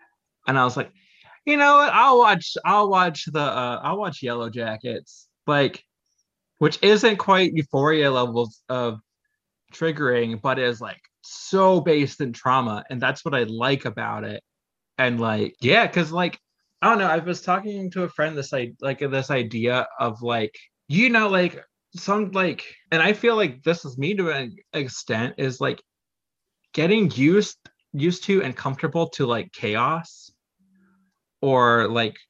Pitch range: 120-175 Hz